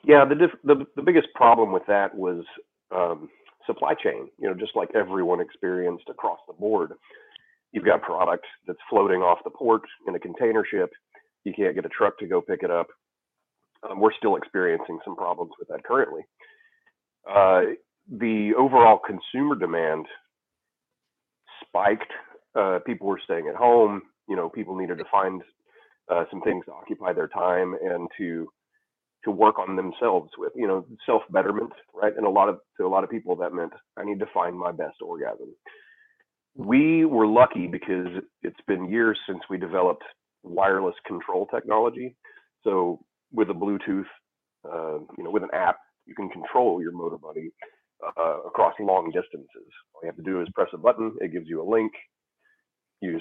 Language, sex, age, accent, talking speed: English, male, 40-59, American, 175 wpm